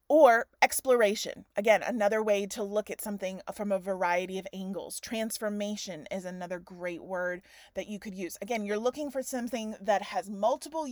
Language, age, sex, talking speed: English, 30-49, female, 170 wpm